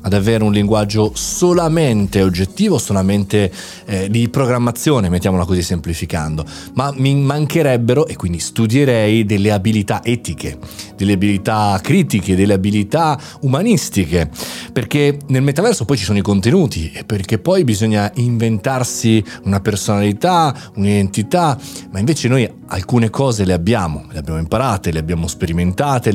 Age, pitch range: 30-49, 100-130 Hz